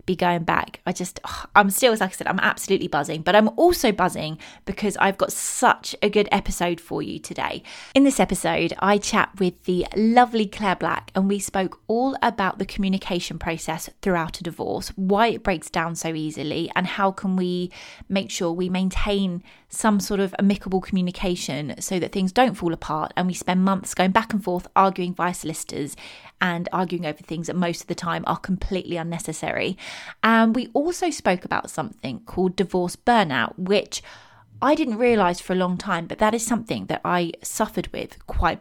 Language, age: English, 20-39